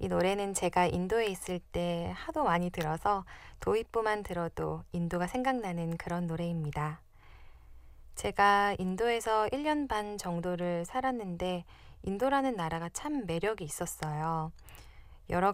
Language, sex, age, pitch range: Korean, female, 20-39, 175-235 Hz